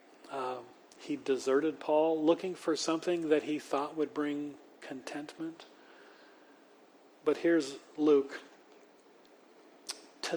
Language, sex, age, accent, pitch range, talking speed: English, male, 40-59, American, 140-170 Hz, 95 wpm